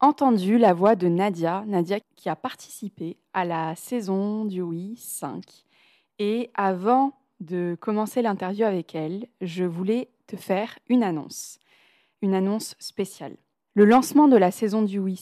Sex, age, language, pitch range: female, 20-39, French, 190-240 Hz